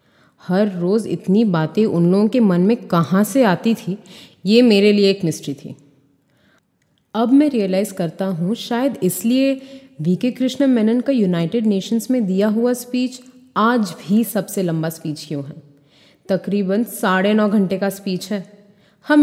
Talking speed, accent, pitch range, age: 160 wpm, native, 175-240 Hz, 30-49